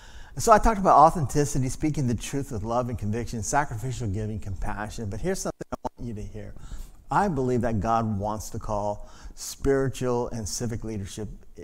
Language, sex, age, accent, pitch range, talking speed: English, male, 50-69, American, 110-145 Hz, 175 wpm